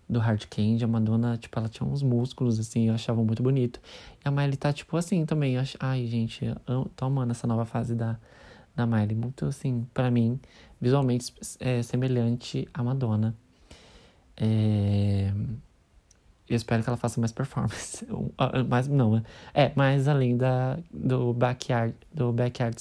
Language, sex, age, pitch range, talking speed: Portuguese, male, 20-39, 115-135 Hz, 160 wpm